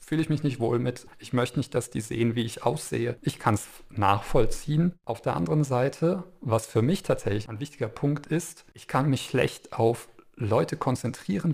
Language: German